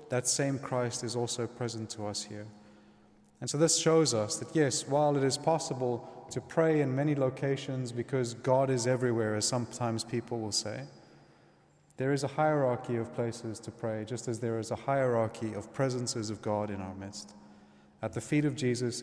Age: 30-49